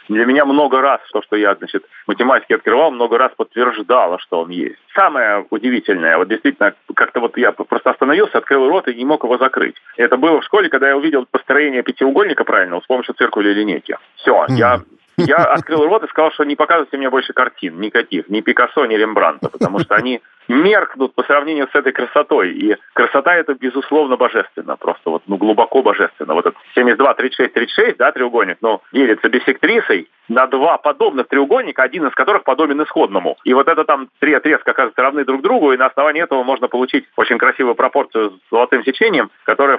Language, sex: Russian, male